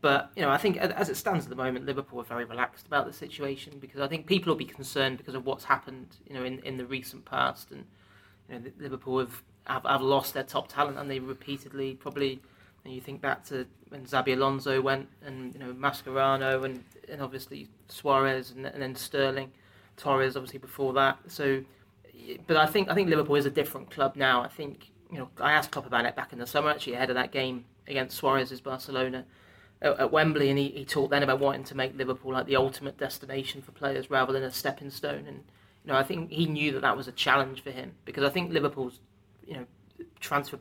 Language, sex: English, male